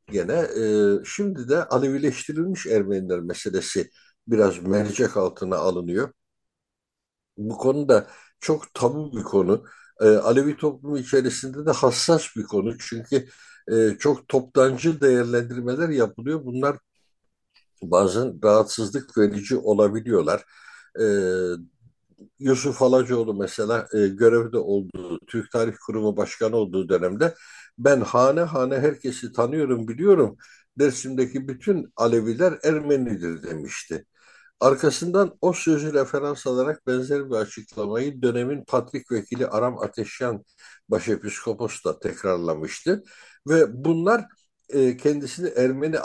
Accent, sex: native, male